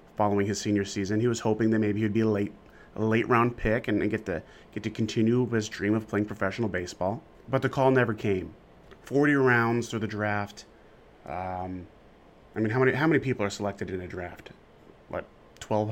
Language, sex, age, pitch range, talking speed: English, male, 30-49, 105-130 Hz, 205 wpm